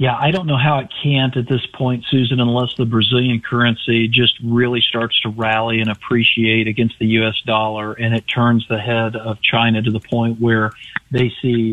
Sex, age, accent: male, 40-59, American